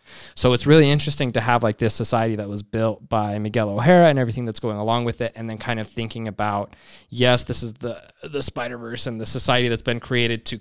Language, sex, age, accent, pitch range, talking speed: English, male, 20-39, American, 110-130 Hz, 240 wpm